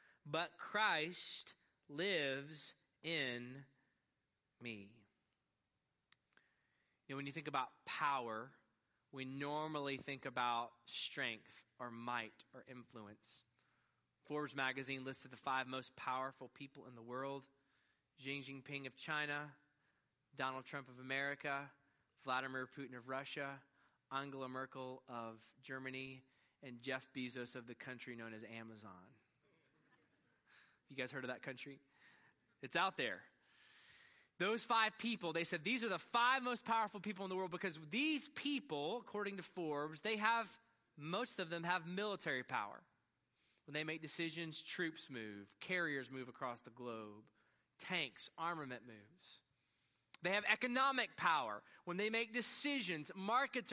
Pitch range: 130-185 Hz